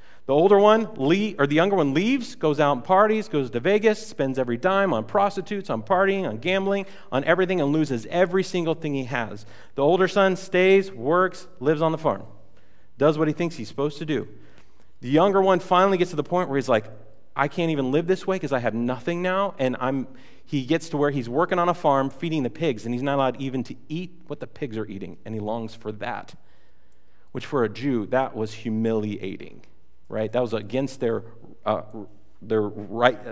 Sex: male